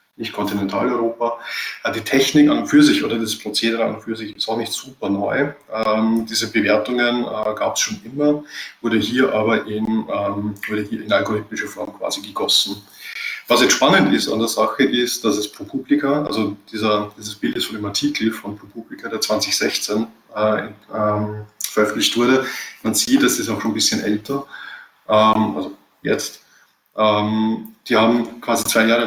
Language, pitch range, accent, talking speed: German, 105-120 Hz, German, 165 wpm